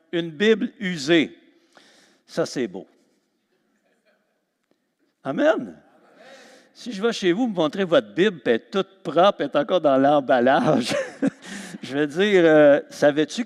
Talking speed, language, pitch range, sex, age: 135 wpm, French, 130-205 Hz, male, 60-79